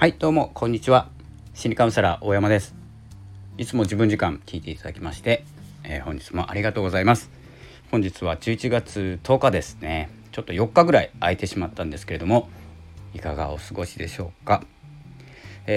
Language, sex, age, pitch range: Japanese, male, 40-59, 80-110 Hz